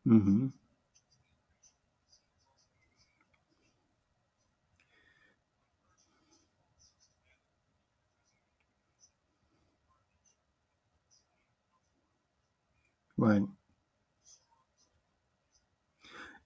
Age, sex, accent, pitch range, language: 60-79, male, American, 110-130 Hz, English